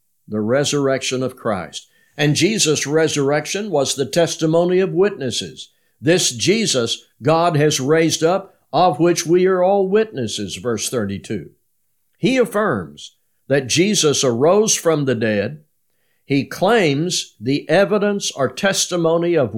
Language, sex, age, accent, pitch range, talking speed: English, male, 60-79, American, 125-165 Hz, 125 wpm